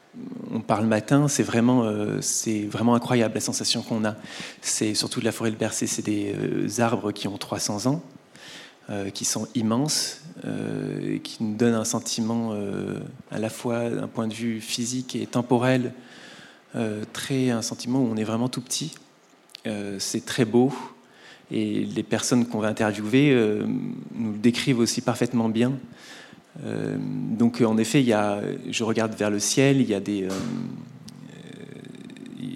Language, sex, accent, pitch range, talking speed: French, male, French, 105-125 Hz, 170 wpm